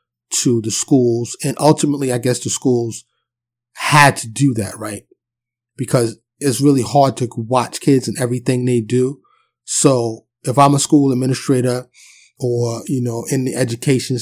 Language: English